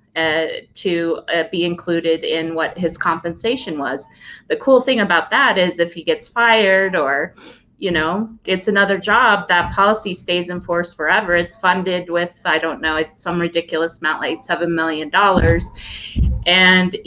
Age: 30-49